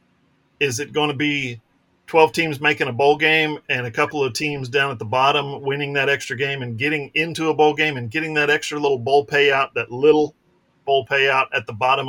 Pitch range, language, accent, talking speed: 130-160 Hz, English, American, 220 wpm